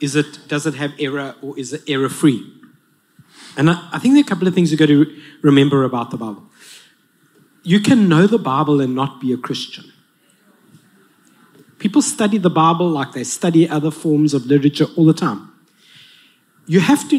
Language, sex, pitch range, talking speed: English, male, 150-205 Hz, 180 wpm